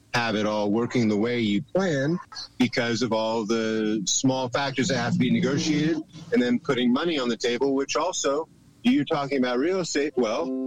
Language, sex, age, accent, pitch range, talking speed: English, male, 30-49, American, 110-135 Hz, 190 wpm